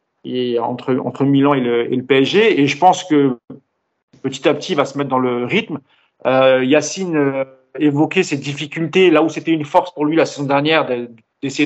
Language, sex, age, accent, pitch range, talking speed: French, male, 40-59, French, 140-180 Hz, 200 wpm